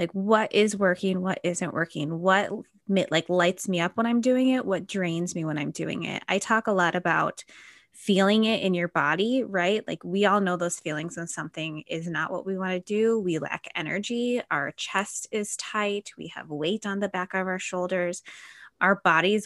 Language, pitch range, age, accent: English, 170-210 Hz, 20-39, American